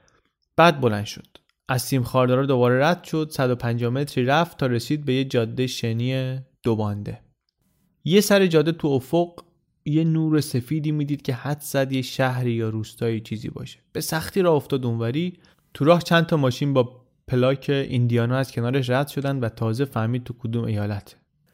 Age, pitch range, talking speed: 30-49, 120-155 Hz, 170 wpm